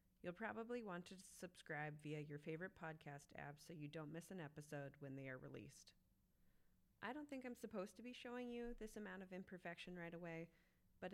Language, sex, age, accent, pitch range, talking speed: English, female, 30-49, American, 150-185 Hz, 195 wpm